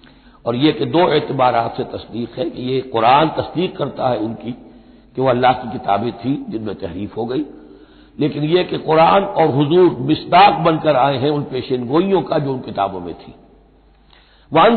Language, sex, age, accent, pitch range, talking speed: Hindi, male, 60-79, native, 115-170 Hz, 180 wpm